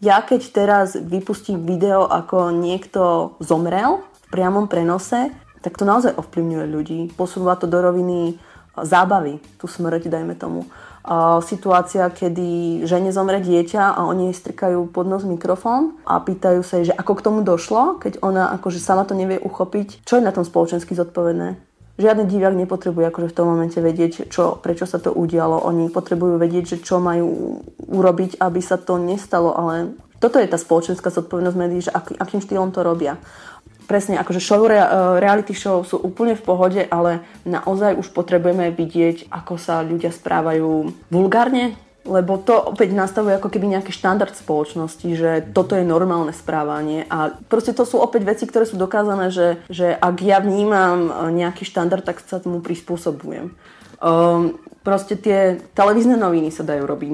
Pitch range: 170-195 Hz